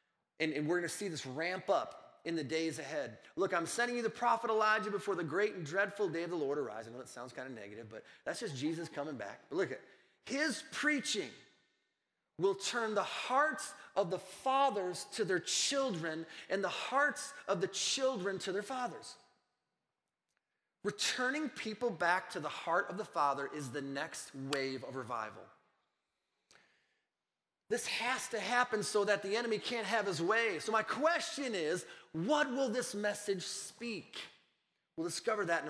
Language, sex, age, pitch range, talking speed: English, male, 30-49, 170-245 Hz, 180 wpm